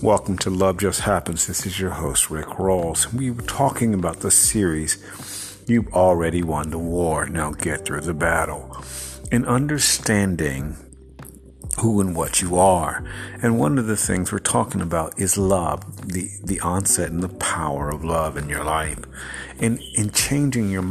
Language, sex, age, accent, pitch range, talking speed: English, male, 50-69, American, 85-100 Hz, 170 wpm